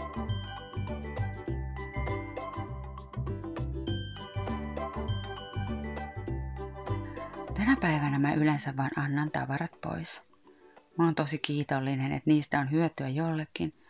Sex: female